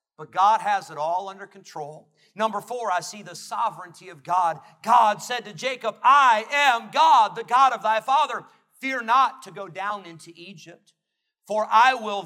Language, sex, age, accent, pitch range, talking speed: English, male, 40-59, American, 215-285 Hz, 180 wpm